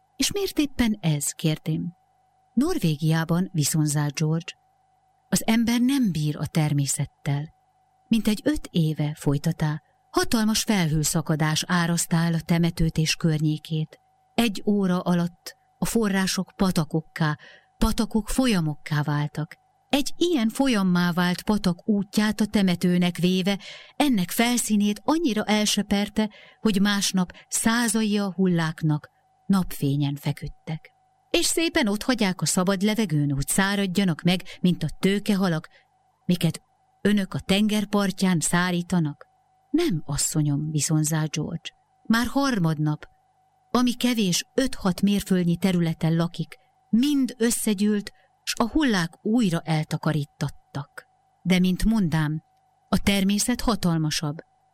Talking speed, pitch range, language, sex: 105 wpm, 165-240 Hz, Hungarian, female